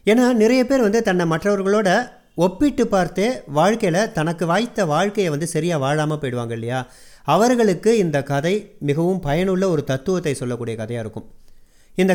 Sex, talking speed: male, 140 wpm